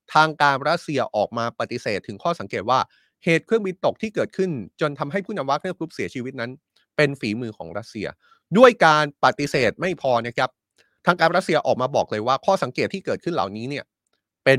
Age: 20-39